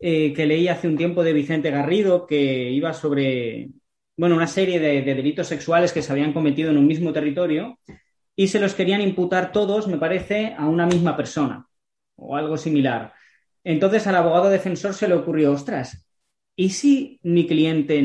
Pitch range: 145-185 Hz